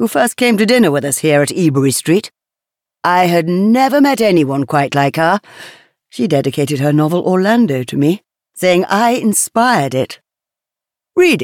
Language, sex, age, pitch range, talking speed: English, female, 60-79, 145-215 Hz, 165 wpm